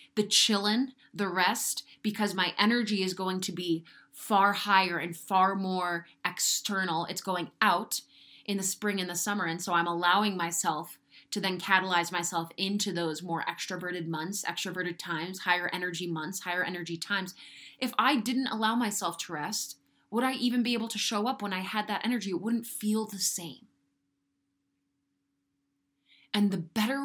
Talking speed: 170 wpm